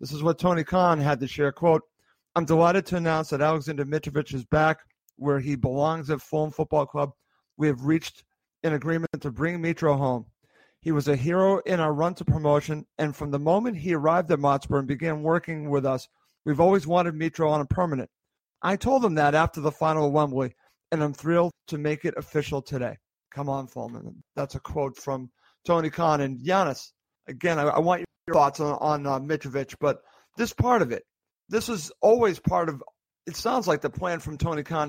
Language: English